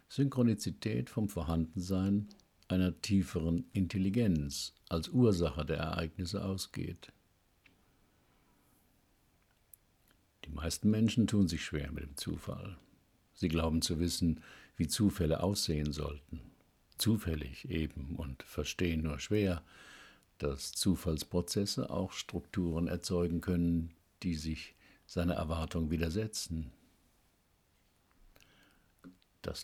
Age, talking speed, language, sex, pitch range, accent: 60-79, 95 wpm, German, male, 80-95 Hz, German